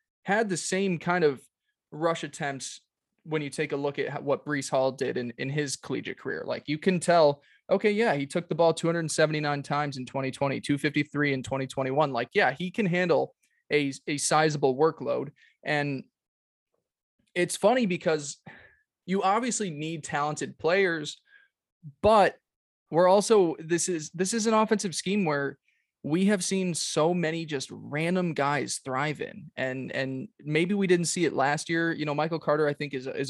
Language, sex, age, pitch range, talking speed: English, male, 20-39, 140-180 Hz, 170 wpm